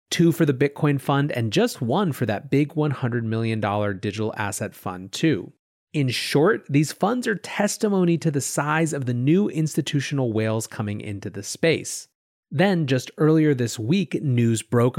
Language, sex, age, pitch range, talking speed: English, male, 30-49, 120-160 Hz, 170 wpm